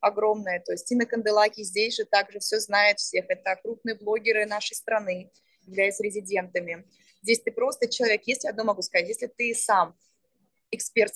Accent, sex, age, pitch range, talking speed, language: native, female, 20-39, 195-230 Hz, 180 wpm, Russian